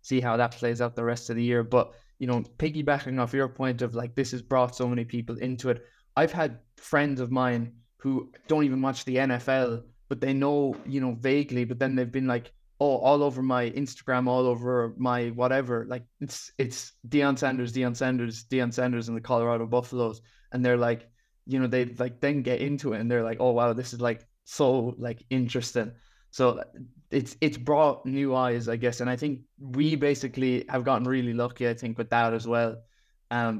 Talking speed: 210 wpm